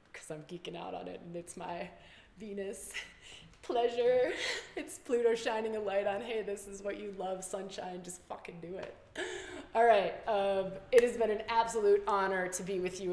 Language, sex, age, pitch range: English, female, 20-39, 170-210 Hz